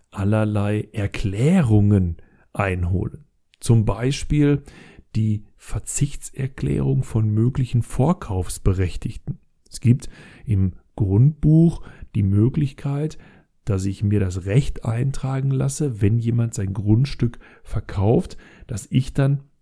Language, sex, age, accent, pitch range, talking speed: German, male, 40-59, German, 100-130 Hz, 95 wpm